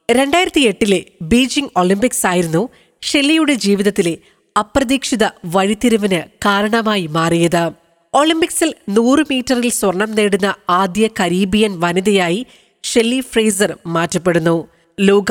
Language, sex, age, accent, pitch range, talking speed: Malayalam, female, 20-39, native, 185-240 Hz, 90 wpm